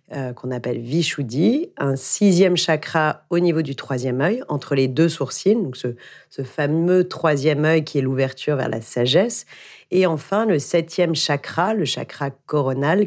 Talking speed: 160 wpm